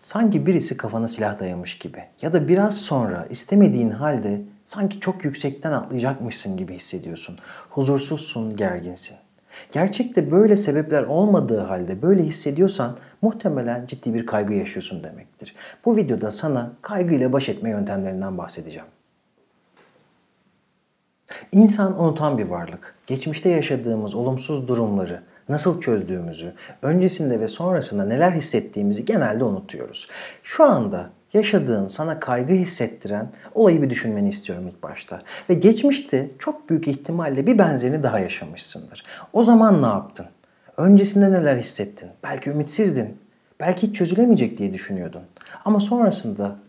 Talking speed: 120 wpm